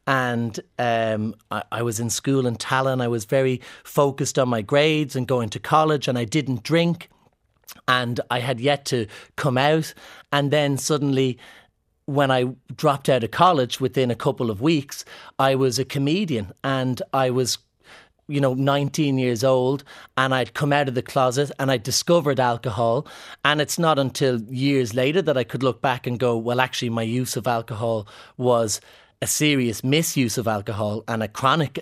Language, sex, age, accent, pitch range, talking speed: English, male, 30-49, Irish, 125-145 Hz, 180 wpm